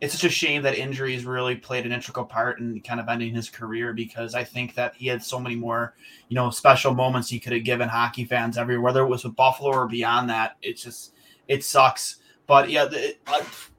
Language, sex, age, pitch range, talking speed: English, male, 20-39, 120-145 Hz, 225 wpm